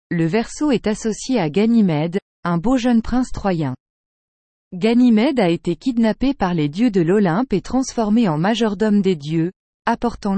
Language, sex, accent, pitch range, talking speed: English, female, French, 180-240 Hz, 155 wpm